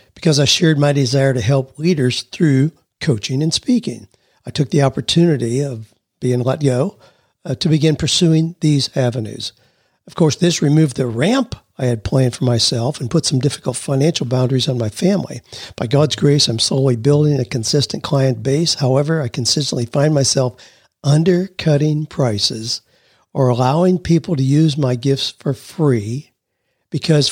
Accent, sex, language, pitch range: American, male, English, 125-155 Hz